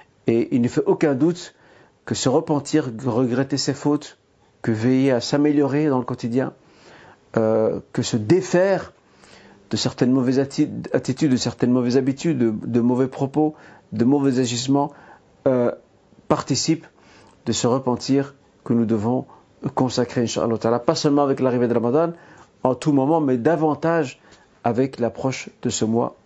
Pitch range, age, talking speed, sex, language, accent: 120-150 Hz, 50-69, 150 wpm, male, French, French